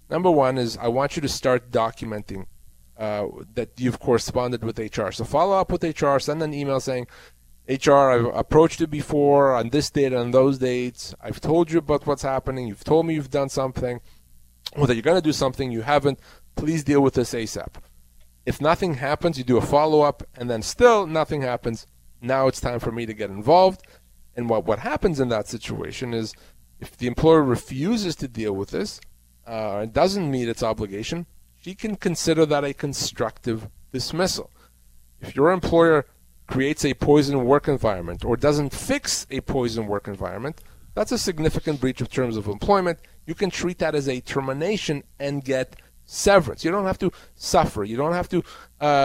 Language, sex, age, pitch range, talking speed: English, male, 30-49, 115-155 Hz, 190 wpm